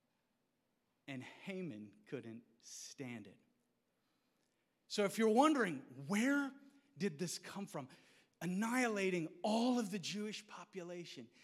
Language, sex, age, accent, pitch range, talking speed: English, male, 40-59, American, 140-195 Hz, 105 wpm